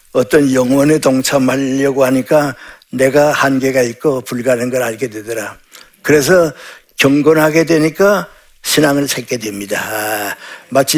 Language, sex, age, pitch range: Korean, male, 60-79, 130-155 Hz